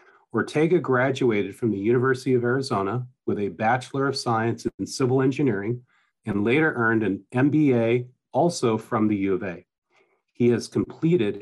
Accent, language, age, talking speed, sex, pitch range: American, English, 40-59, 150 wpm, male, 110-130 Hz